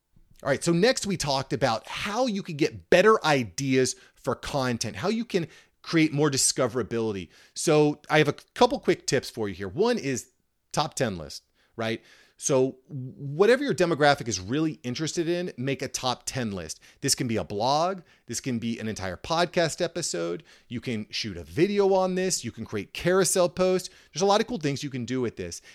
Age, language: 30-49, English